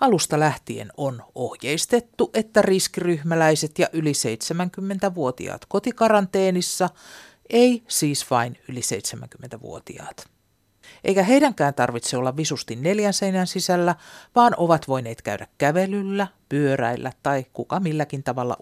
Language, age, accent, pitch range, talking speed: Finnish, 50-69, native, 130-195 Hz, 105 wpm